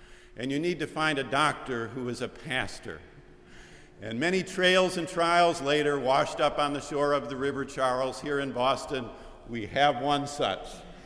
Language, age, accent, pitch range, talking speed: English, 50-69, American, 115-145 Hz, 180 wpm